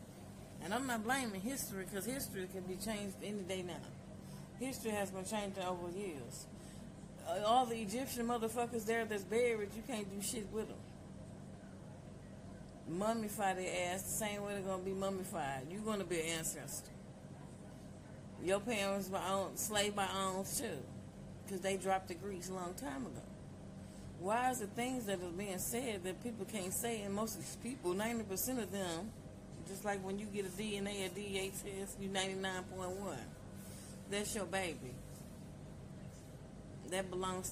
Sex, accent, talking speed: female, American, 165 wpm